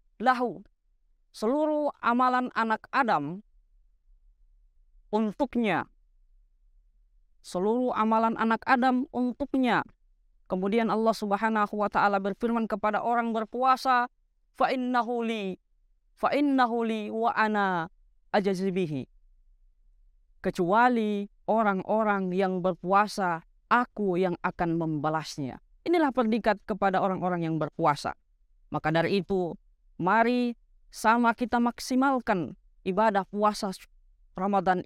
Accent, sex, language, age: native, female, Indonesian, 20-39